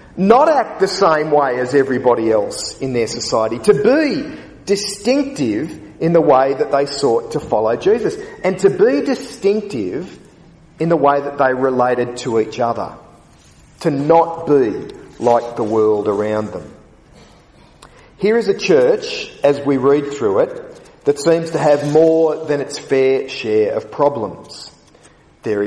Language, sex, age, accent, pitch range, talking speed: English, male, 40-59, Australian, 130-195 Hz, 150 wpm